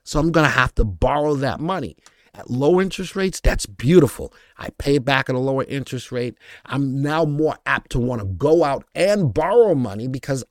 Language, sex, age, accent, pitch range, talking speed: English, male, 50-69, American, 115-150 Hz, 205 wpm